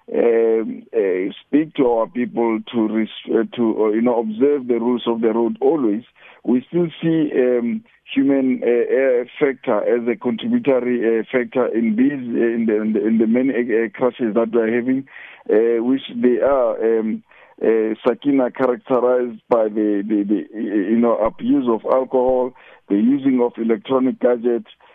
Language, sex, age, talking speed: English, male, 50-69, 165 wpm